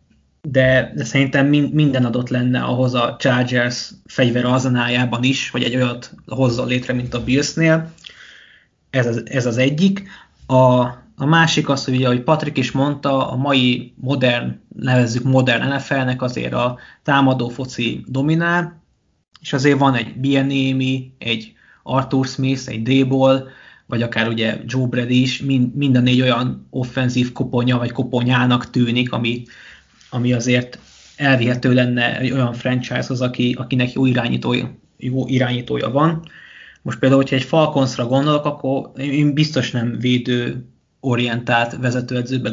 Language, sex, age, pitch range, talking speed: Hungarian, male, 20-39, 125-140 Hz, 135 wpm